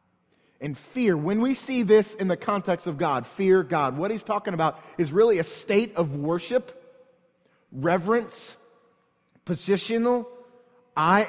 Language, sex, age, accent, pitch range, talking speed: English, male, 30-49, American, 165-210 Hz, 140 wpm